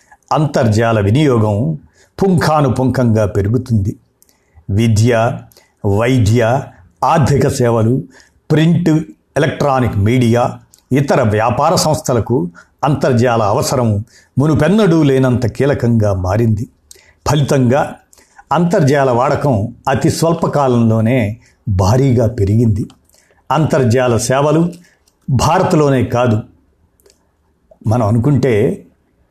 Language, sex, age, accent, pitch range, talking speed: Telugu, male, 50-69, native, 110-145 Hz, 70 wpm